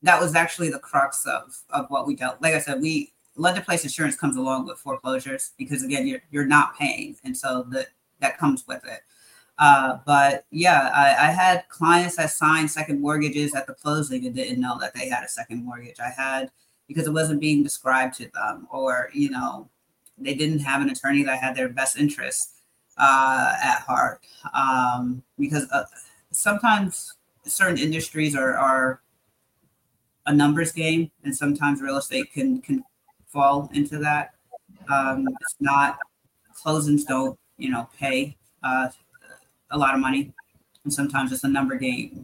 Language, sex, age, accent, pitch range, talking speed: English, female, 30-49, American, 135-165 Hz, 170 wpm